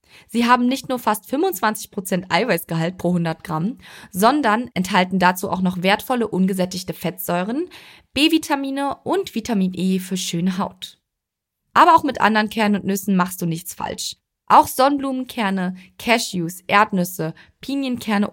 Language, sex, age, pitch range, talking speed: German, female, 20-39, 185-255 Hz, 135 wpm